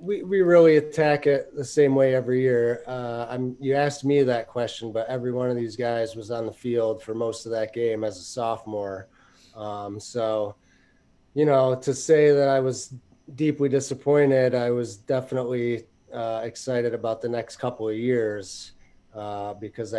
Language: English